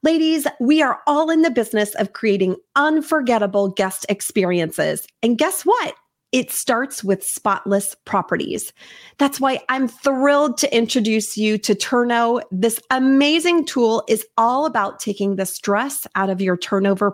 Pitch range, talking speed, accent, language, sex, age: 210-295 Hz, 145 wpm, American, English, female, 30-49